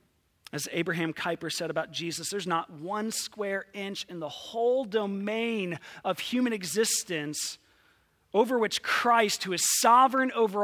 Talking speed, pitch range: 140 wpm, 150-195 Hz